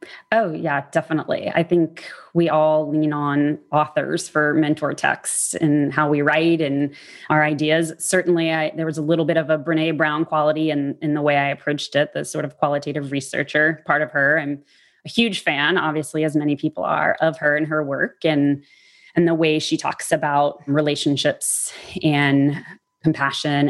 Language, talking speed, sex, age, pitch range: English, 180 wpm, female, 20-39, 145-170 Hz